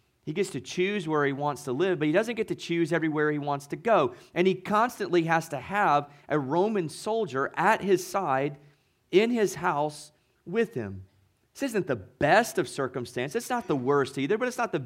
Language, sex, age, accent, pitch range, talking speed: English, male, 30-49, American, 145-205 Hz, 210 wpm